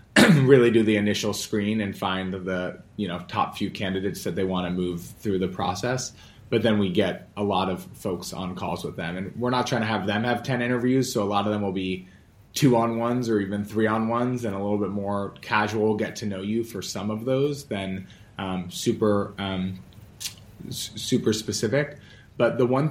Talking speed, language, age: 195 wpm, English, 20-39